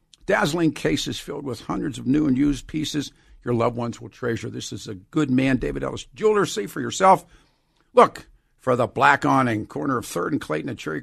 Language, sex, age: English, male, 50-69